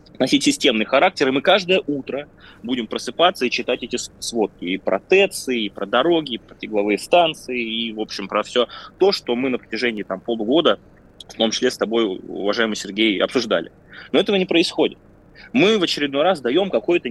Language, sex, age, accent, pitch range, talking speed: Russian, male, 20-39, native, 115-145 Hz, 185 wpm